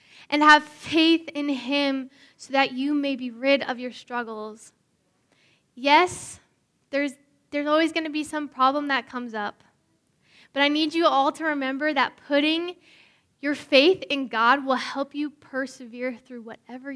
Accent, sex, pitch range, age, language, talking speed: American, female, 235-290 Hz, 10-29, English, 160 wpm